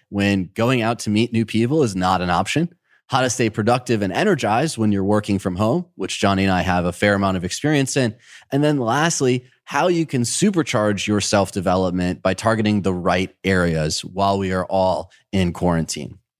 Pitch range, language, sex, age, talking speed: 95-125 Hz, English, male, 30-49, 195 wpm